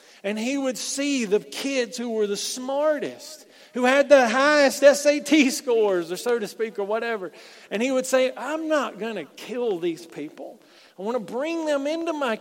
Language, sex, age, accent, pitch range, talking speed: English, male, 40-59, American, 200-275 Hz, 195 wpm